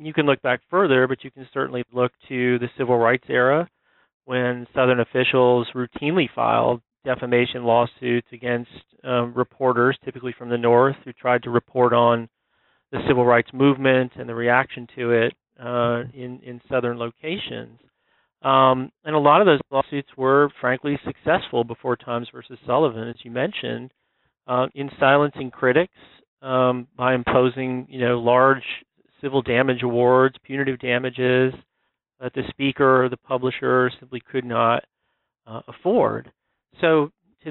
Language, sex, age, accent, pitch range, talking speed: English, male, 40-59, American, 120-135 Hz, 150 wpm